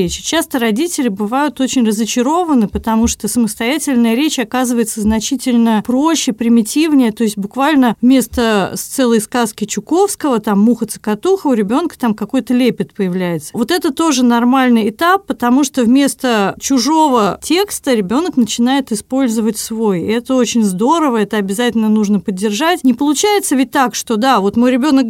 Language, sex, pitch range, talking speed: Russian, female, 225-285 Hz, 145 wpm